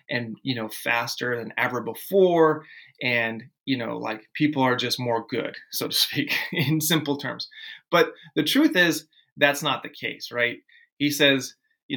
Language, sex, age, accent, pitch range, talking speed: English, male, 30-49, American, 130-175 Hz, 170 wpm